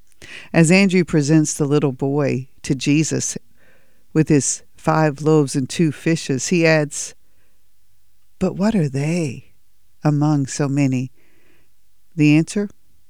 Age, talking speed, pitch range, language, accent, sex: 50-69, 120 wpm, 130-165 Hz, English, American, female